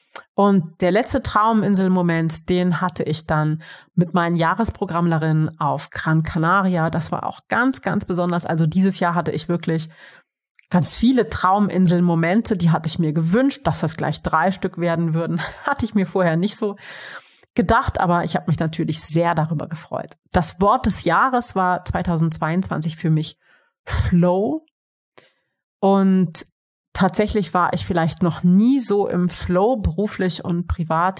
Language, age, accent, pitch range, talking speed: German, 30-49, German, 160-190 Hz, 150 wpm